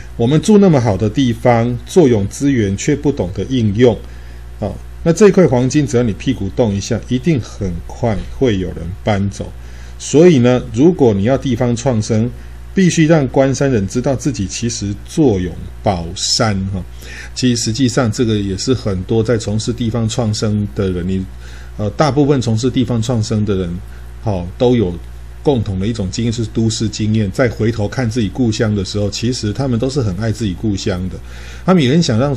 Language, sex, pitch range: Chinese, male, 95-130 Hz